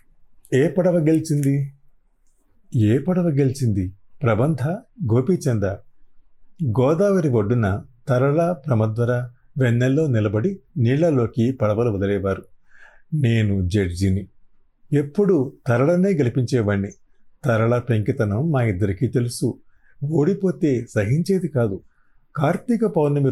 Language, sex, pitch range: Telugu, male, 110-150 Hz